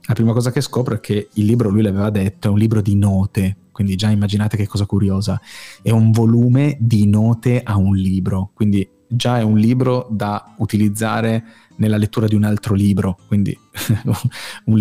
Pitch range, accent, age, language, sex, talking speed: 100-115 Hz, native, 30-49, Italian, male, 185 wpm